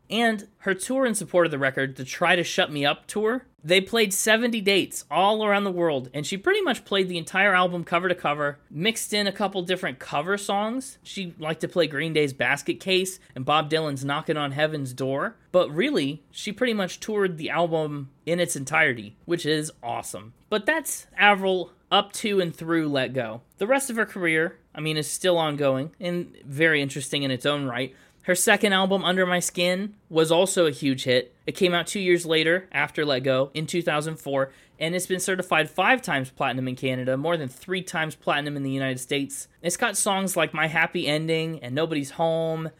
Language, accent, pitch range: English, American, 145-190 Hz